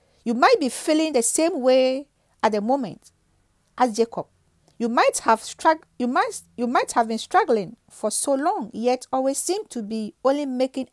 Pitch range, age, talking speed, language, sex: 220-290 Hz, 50-69, 180 wpm, English, female